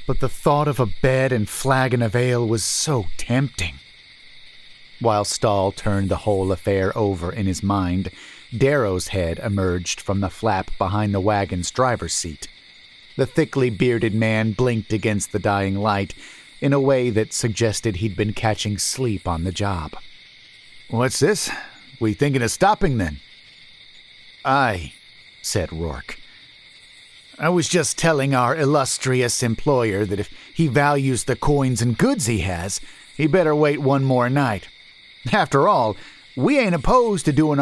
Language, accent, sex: English, American, male